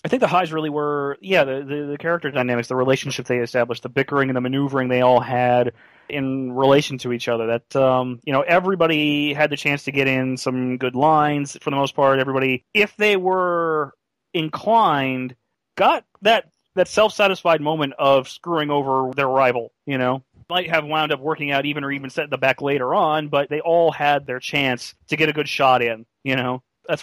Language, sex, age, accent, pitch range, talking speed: English, male, 30-49, American, 130-160 Hz, 210 wpm